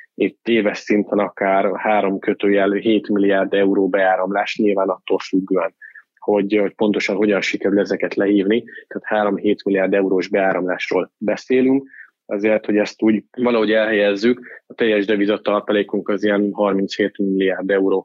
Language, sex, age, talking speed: Hungarian, male, 20-39, 135 wpm